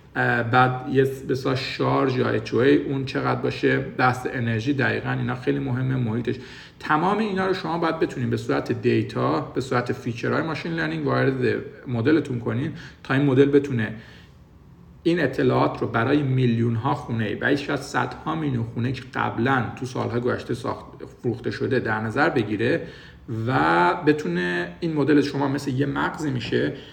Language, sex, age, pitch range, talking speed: Persian, male, 50-69, 120-145 Hz, 155 wpm